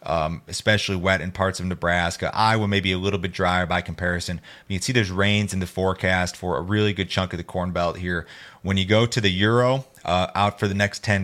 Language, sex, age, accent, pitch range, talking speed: English, male, 30-49, American, 90-105 Hz, 245 wpm